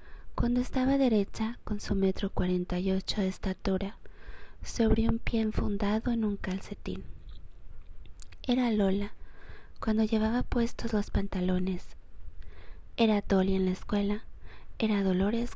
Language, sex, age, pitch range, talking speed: Spanish, female, 20-39, 185-220 Hz, 125 wpm